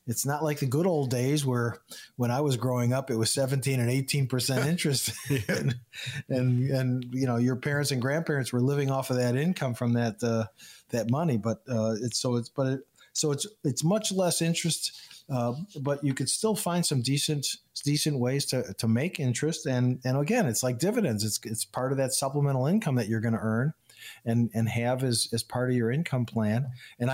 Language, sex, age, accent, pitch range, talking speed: English, male, 50-69, American, 120-145 Hz, 210 wpm